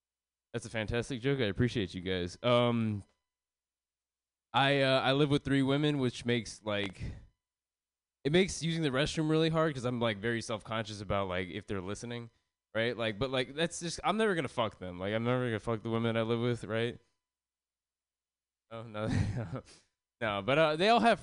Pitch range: 95-125 Hz